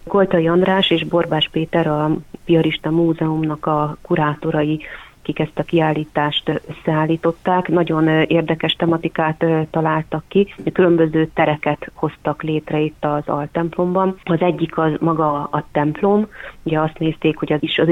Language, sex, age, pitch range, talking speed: Hungarian, female, 30-49, 150-165 Hz, 125 wpm